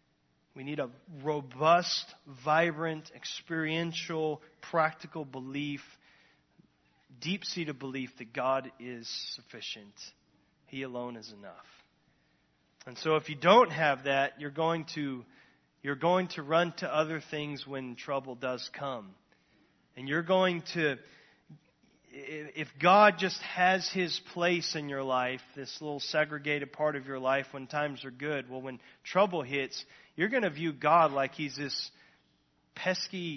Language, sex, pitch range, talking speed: English, male, 135-165 Hz, 140 wpm